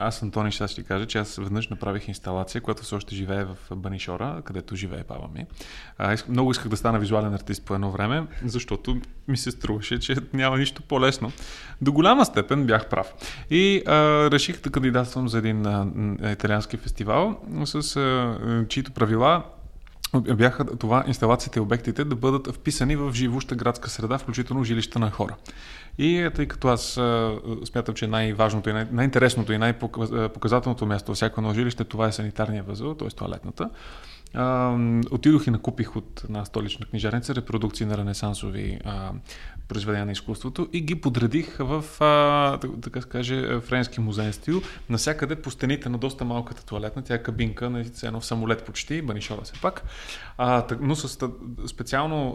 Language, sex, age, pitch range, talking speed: Bulgarian, male, 20-39, 110-130 Hz, 165 wpm